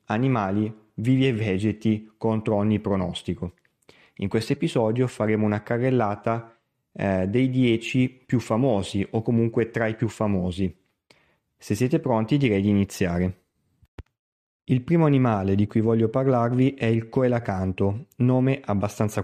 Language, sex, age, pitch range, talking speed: Italian, male, 30-49, 100-130 Hz, 130 wpm